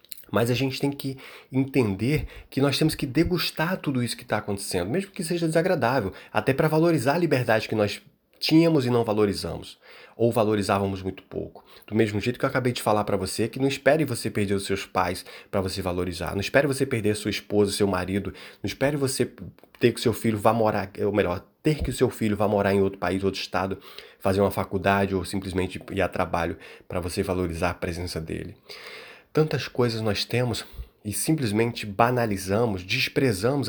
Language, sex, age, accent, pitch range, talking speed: Portuguese, male, 20-39, Brazilian, 95-130 Hz, 195 wpm